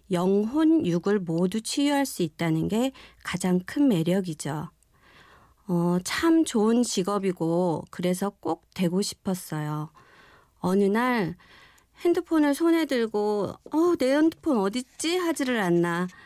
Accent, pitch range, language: native, 175-245 Hz, Korean